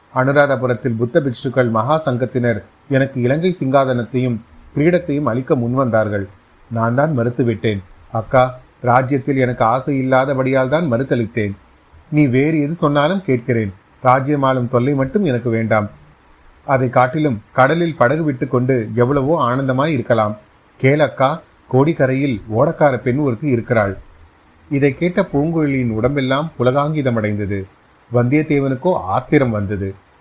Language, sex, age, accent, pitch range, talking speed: Tamil, male, 30-49, native, 115-145 Hz, 105 wpm